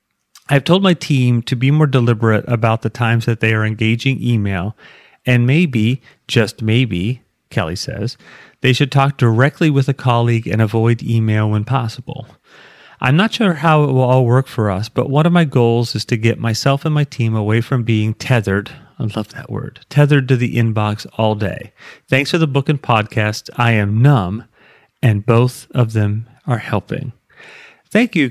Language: English